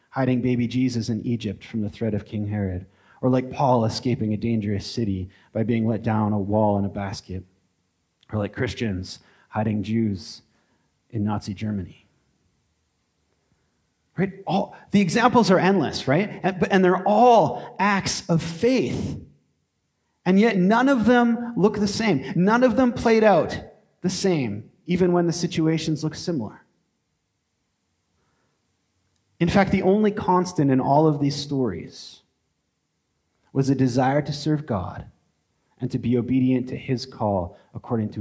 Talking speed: 150 wpm